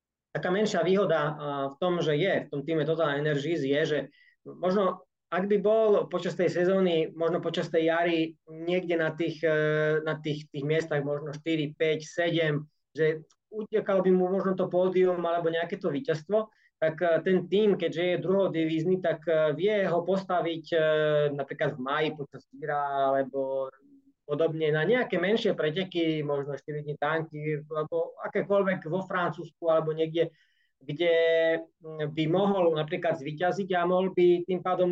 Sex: male